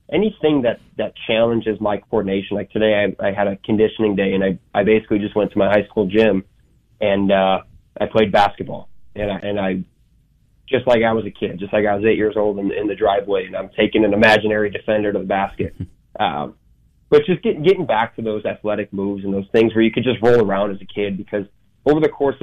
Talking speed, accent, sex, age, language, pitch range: 230 wpm, American, male, 20-39, English, 100-110 Hz